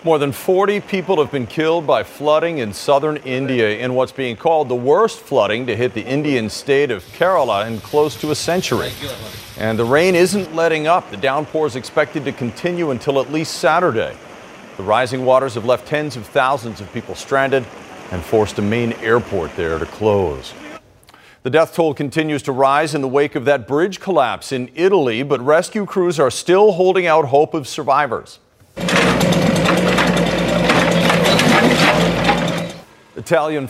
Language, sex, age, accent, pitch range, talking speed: English, male, 40-59, American, 125-160 Hz, 165 wpm